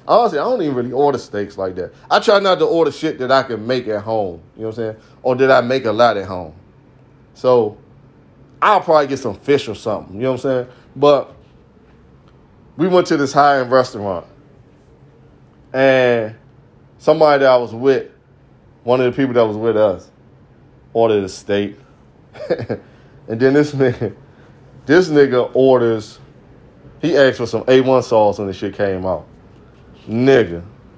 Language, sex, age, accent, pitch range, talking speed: English, male, 20-39, American, 115-145 Hz, 170 wpm